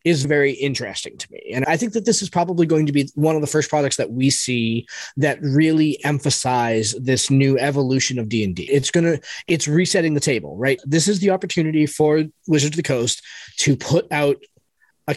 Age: 20-39